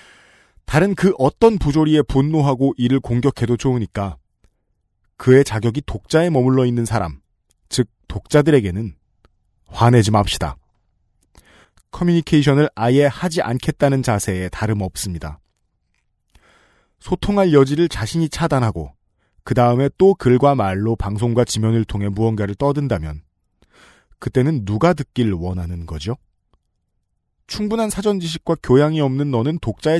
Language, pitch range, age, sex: Korean, 105-150 Hz, 30-49, male